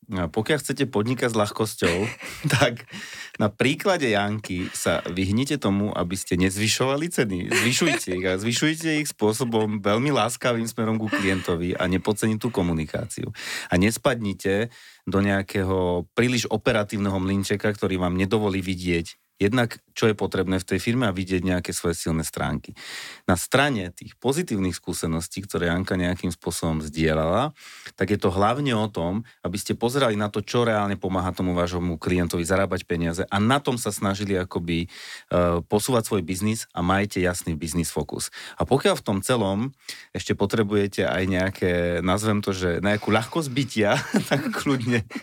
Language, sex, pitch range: Slovak, male, 90-115 Hz